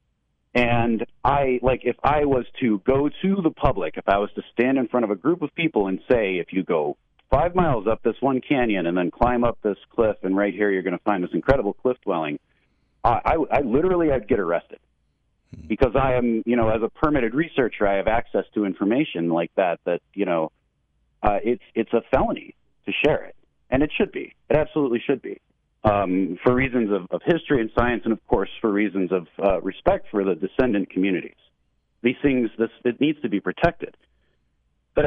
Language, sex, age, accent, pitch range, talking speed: English, male, 40-59, American, 105-135 Hz, 210 wpm